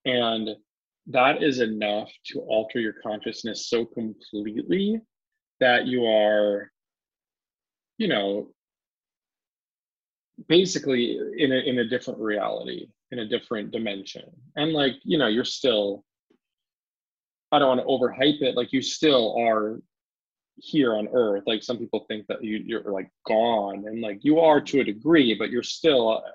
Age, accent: 20-39, American